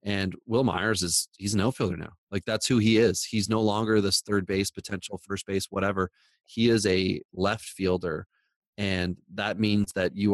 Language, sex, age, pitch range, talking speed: English, male, 30-49, 90-105 Hz, 190 wpm